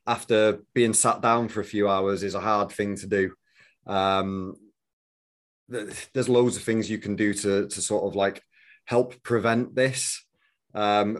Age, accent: 30-49, British